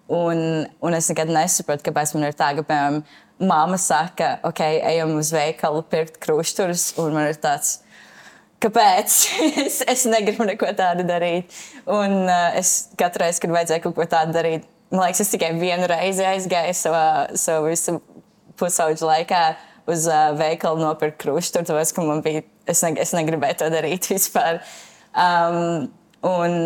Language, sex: English, female